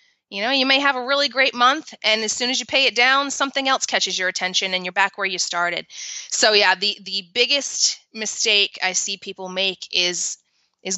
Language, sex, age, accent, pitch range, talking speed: English, female, 20-39, American, 200-275 Hz, 220 wpm